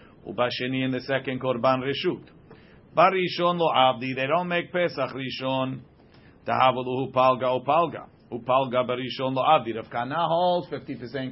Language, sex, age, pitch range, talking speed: English, male, 50-69, 130-170 Hz, 135 wpm